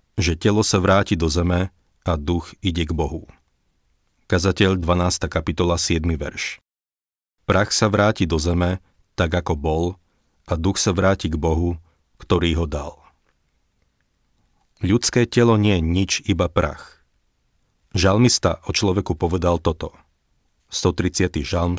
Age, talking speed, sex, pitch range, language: 40-59, 130 wpm, male, 85-95 Hz, Slovak